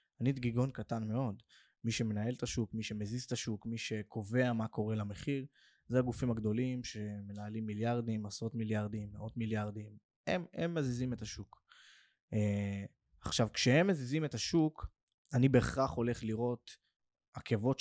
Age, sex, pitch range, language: 20-39, male, 110-145 Hz, Hebrew